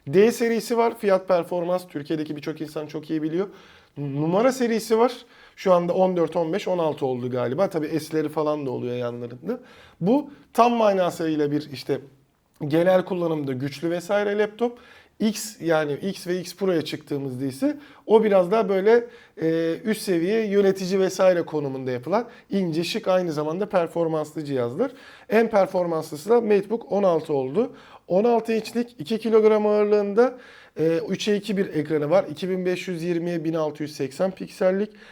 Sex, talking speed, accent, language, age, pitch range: male, 140 wpm, native, Turkish, 40-59, 155-210 Hz